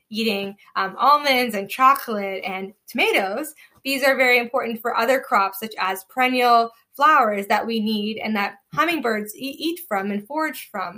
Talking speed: 160 wpm